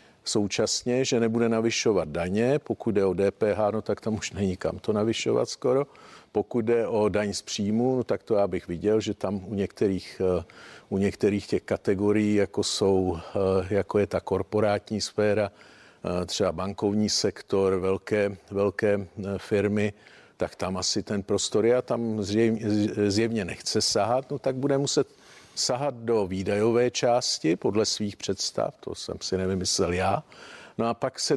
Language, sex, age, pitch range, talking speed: Czech, male, 50-69, 100-115 Hz, 155 wpm